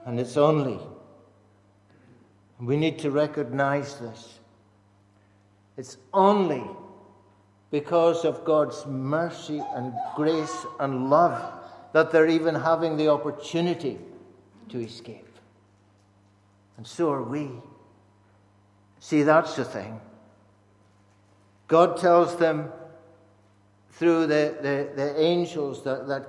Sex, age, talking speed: male, 60-79, 100 wpm